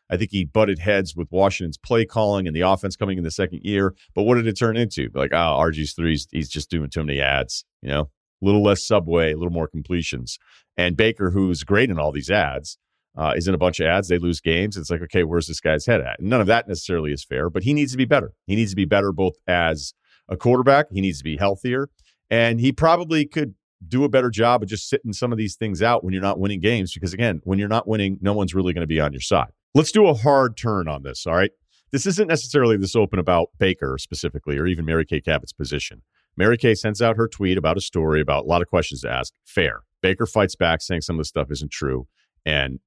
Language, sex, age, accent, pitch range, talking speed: English, male, 40-59, American, 80-110 Hz, 255 wpm